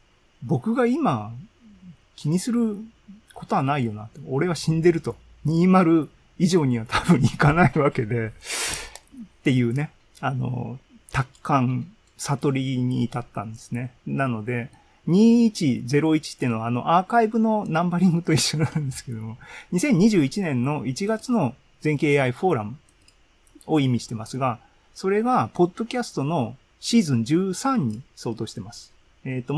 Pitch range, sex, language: 120-180 Hz, male, Japanese